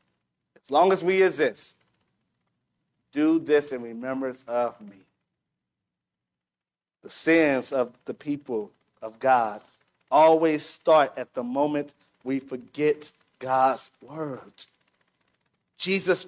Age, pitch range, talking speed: 30-49, 145-205 Hz, 105 wpm